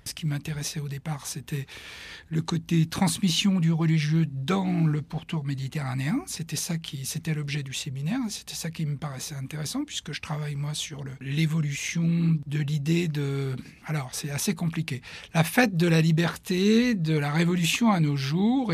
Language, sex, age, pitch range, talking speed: French, male, 60-79, 145-170 Hz, 170 wpm